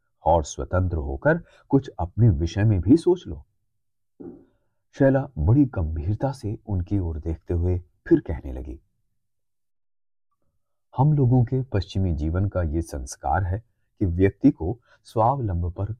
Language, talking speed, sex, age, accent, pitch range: Hindi, 130 wpm, male, 30-49, native, 90-125 Hz